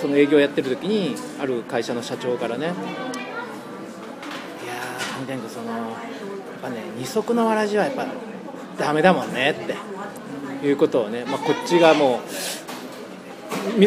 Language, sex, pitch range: Japanese, male, 135-185 Hz